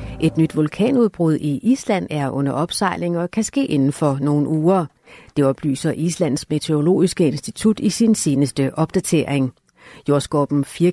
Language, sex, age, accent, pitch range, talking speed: Danish, female, 60-79, native, 145-195 Hz, 145 wpm